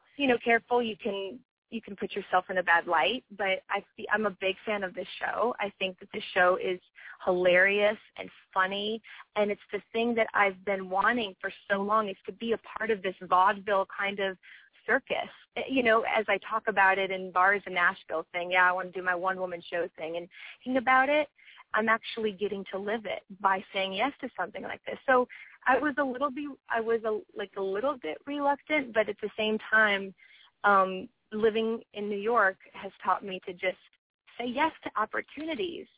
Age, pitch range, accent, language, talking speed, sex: 20-39, 190-230 Hz, American, English, 210 wpm, female